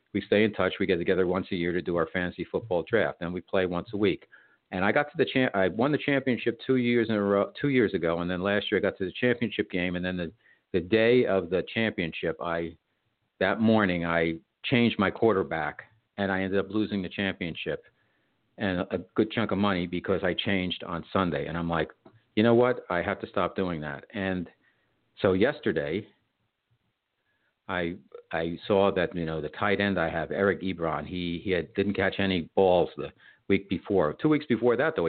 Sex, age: male, 50-69